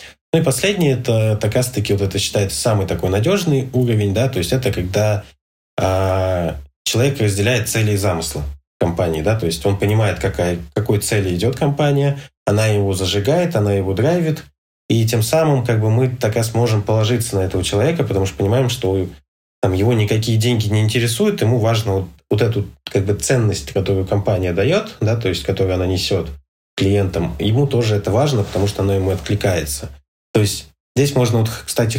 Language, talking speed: Russian, 180 wpm